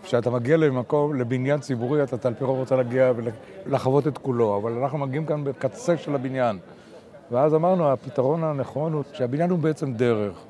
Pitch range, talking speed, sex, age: 125-155 Hz, 170 wpm, male, 60-79